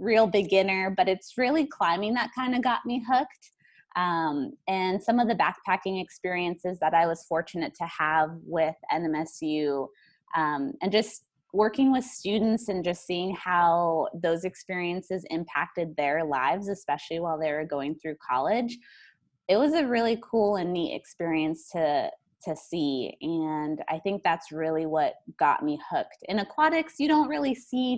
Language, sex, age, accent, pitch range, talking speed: English, female, 20-39, American, 160-225 Hz, 160 wpm